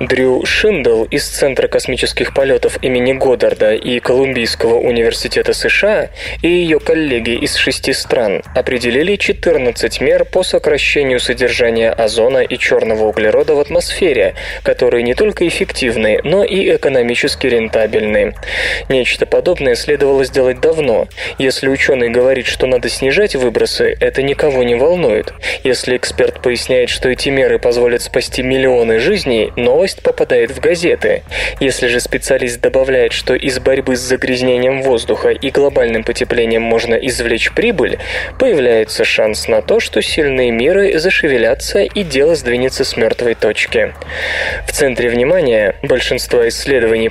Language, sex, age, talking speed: Russian, male, 20-39, 130 wpm